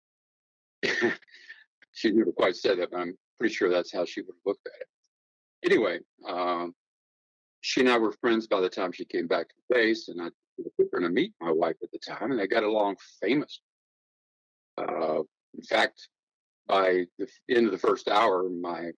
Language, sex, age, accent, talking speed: English, male, 50-69, American, 195 wpm